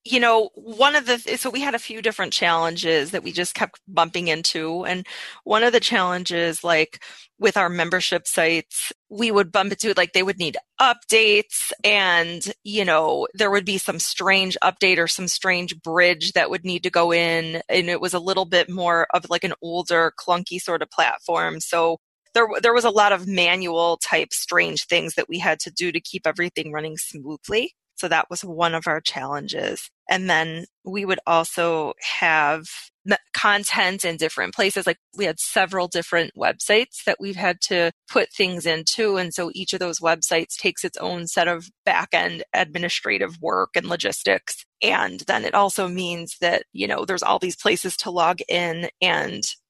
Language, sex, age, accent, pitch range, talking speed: English, female, 20-39, American, 170-200 Hz, 185 wpm